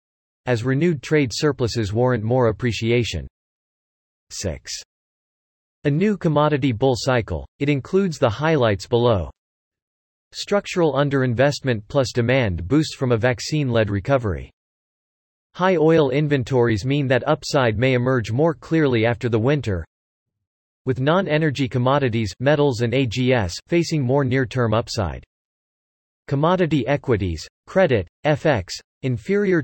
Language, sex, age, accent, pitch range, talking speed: English, male, 40-59, American, 110-150 Hz, 110 wpm